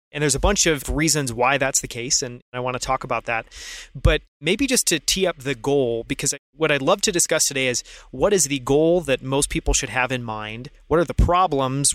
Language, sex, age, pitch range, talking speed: English, male, 30-49, 125-150 Hz, 240 wpm